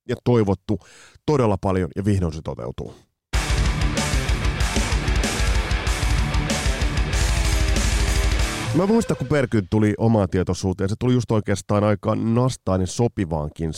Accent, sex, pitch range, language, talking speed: native, male, 90-120 Hz, Finnish, 100 wpm